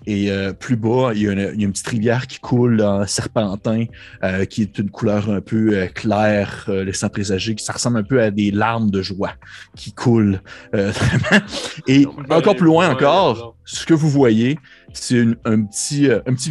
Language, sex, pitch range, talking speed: French, male, 95-120 Hz, 205 wpm